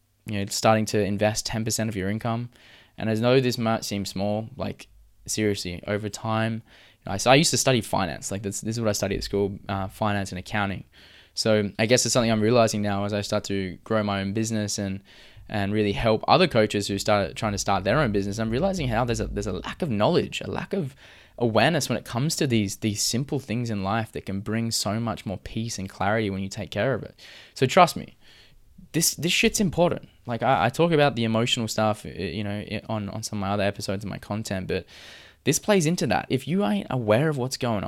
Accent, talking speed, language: Australian, 240 wpm, English